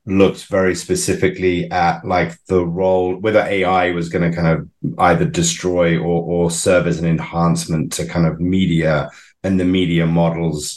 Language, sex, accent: English, male, British